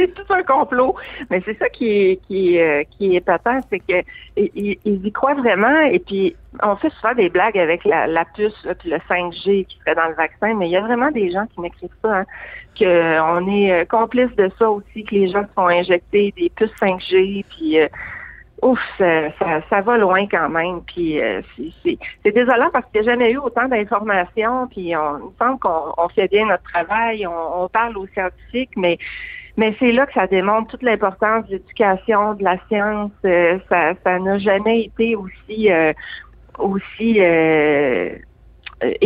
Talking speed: 195 wpm